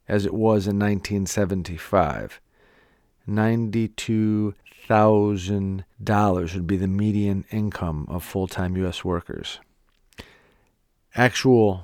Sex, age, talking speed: male, 40-59, 75 wpm